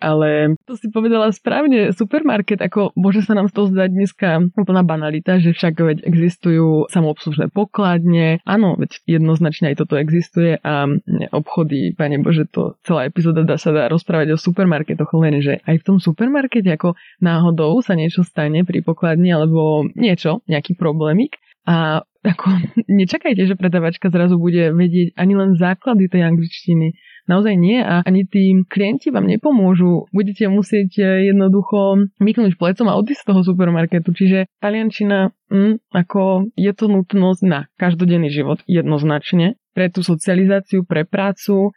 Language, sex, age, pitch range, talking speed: Slovak, female, 20-39, 160-200 Hz, 150 wpm